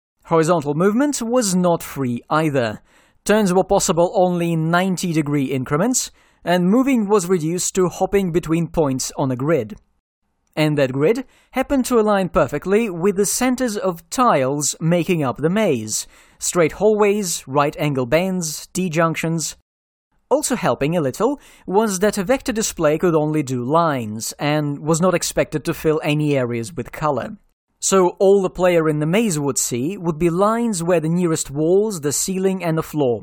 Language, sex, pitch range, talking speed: English, male, 145-200 Hz, 160 wpm